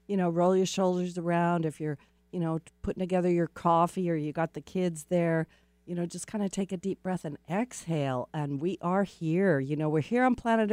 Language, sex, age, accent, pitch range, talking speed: English, female, 50-69, American, 150-195 Hz, 230 wpm